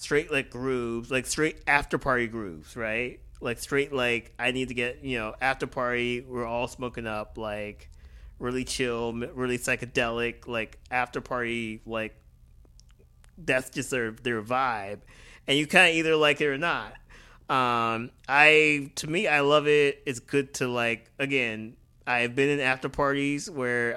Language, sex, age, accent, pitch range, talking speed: English, male, 30-49, American, 115-140 Hz, 165 wpm